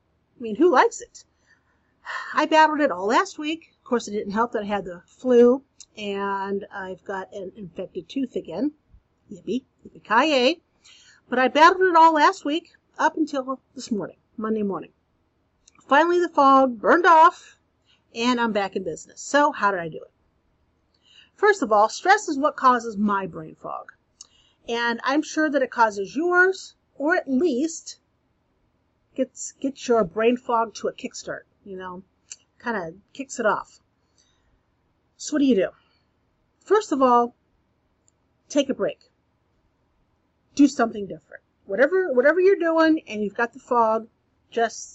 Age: 50-69